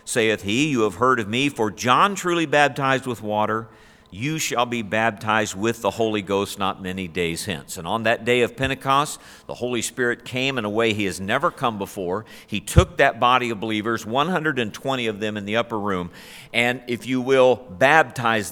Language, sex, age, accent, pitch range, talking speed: English, male, 50-69, American, 100-130 Hz, 200 wpm